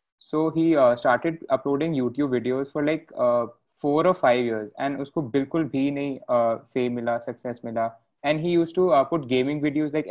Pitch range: 120-145 Hz